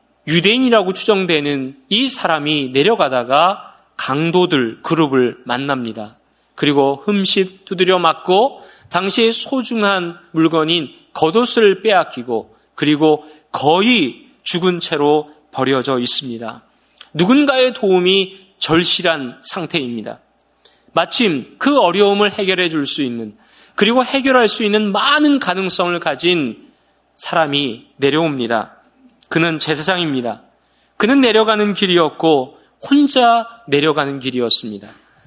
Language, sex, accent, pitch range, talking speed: English, male, Korean, 150-215 Hz, 85 wpm